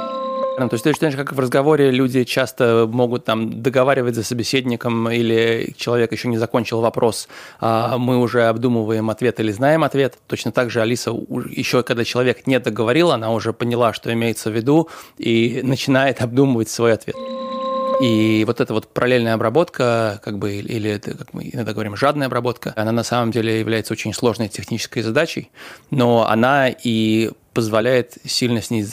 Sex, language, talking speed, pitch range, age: male, Russian, 160 wpm, 110-130 Hz, 20-39